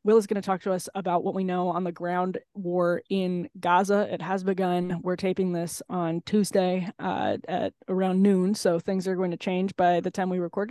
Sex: female